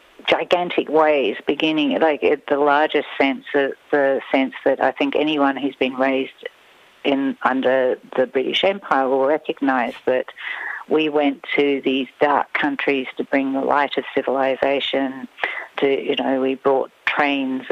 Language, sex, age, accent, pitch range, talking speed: English, female, 50-69, Australian, 135-185 Hz, 150 wpm